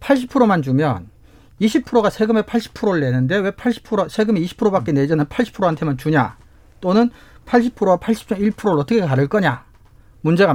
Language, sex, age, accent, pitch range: Korean, male, 40-59, native, 140-225 Hz